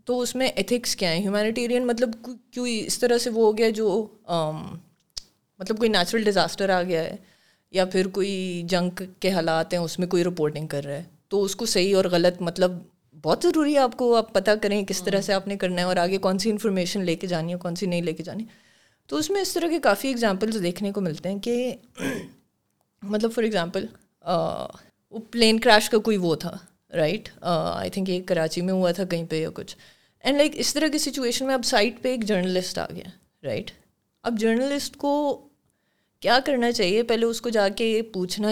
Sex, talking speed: female, 210 wpm